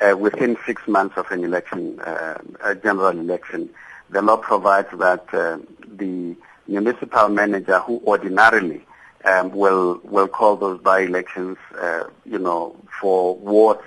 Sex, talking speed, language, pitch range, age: male, 140 wpm, English, 95-105 Hz, 50-69